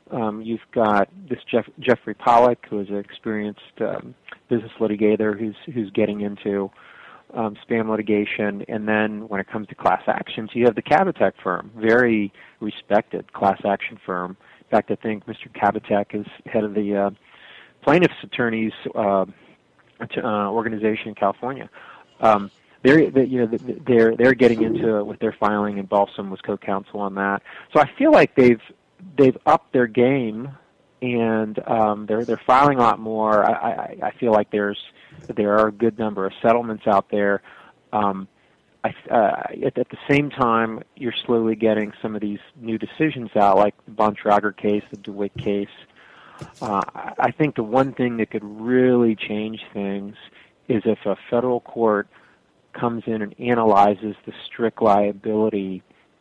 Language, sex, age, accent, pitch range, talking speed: English, male, 30-49, American, 105-115 Hz, 165 wpm